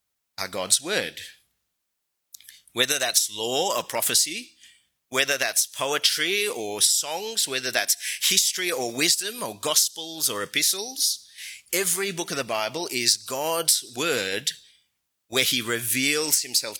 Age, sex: 30-49, male